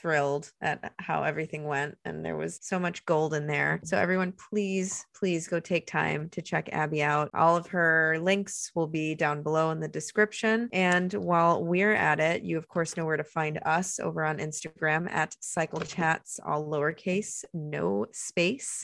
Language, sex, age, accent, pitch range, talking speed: English, female, 20-39, American, 160-195 Hz, 185 wpm